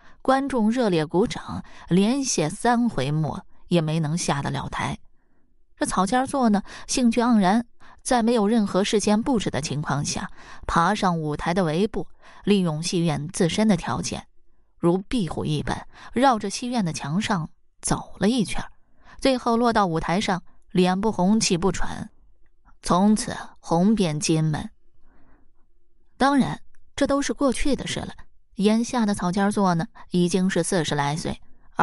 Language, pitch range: Chinese, 165-220 Hz